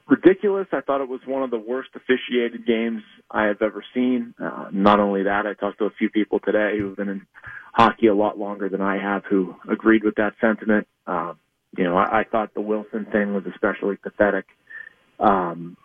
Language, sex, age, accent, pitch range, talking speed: English, male, 40-59, American, 105-130 Hz, 210 wpm